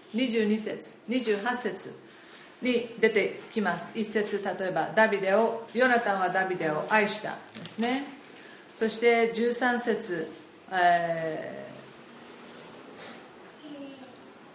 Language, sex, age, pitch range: Japanese, female, 40-59, 200-240 Hz